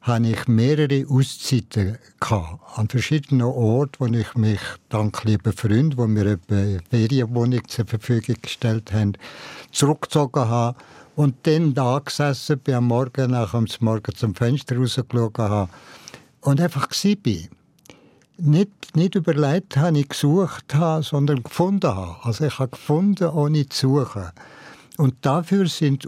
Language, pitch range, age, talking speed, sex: German, 115-145 Hz, 60-79, 145 wpm, male